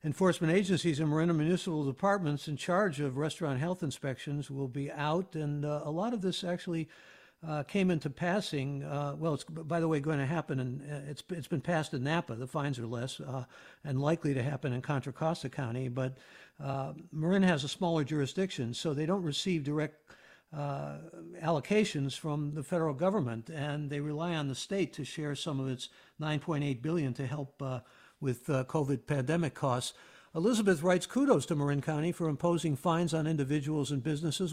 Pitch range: 145-180 Hz